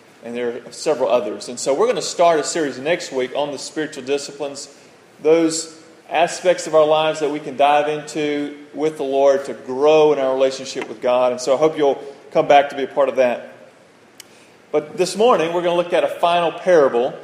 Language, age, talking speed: English, 30-49, 220 wpm